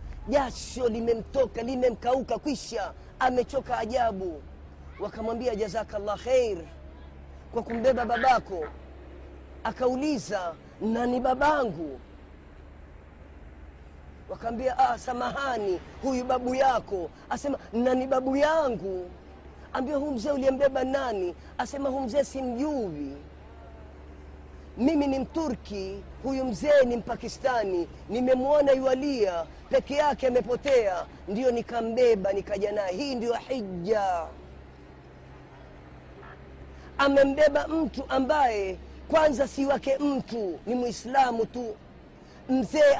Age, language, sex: 30-49, Swahili, female